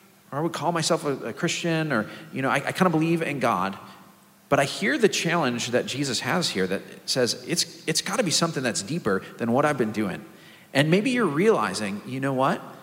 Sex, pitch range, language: male, 120-165 Hz, English